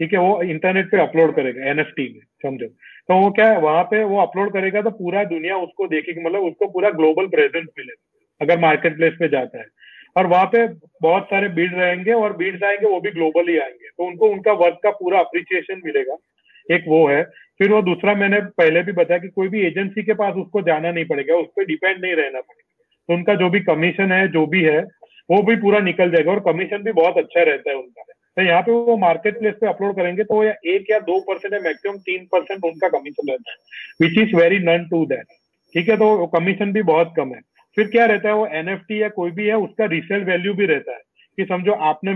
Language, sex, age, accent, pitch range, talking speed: English, male, 30-49, Indian, 170-215 Hz, 170 wpm